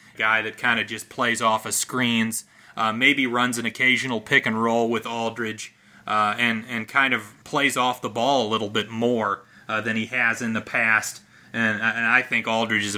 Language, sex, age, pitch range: English, male, 30-49, 110-125 Hz